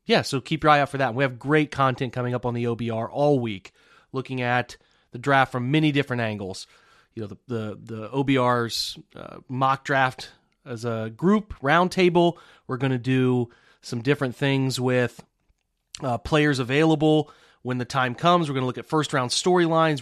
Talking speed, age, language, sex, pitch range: 190 wpm, 30-49, English, male, 125-150 Hz